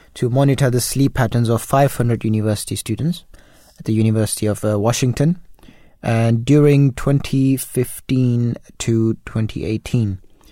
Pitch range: 110-125 Hz